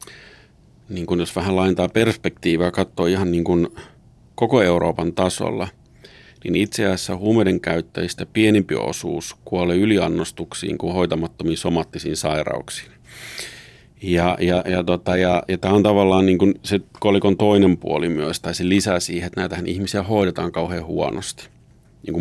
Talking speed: 145 wpm